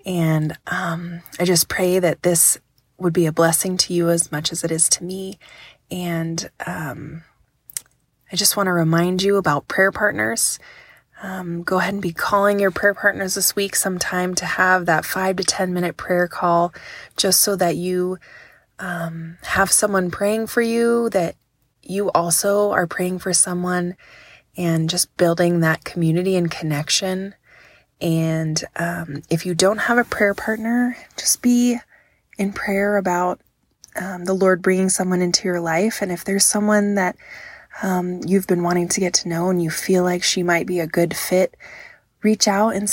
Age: 20-39